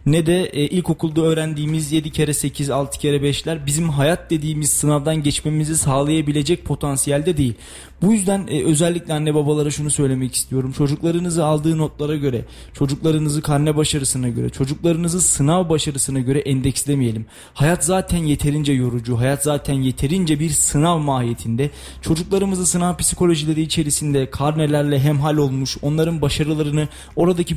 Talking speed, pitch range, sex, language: 135 wpm, 135-160 Hz, male, Turkish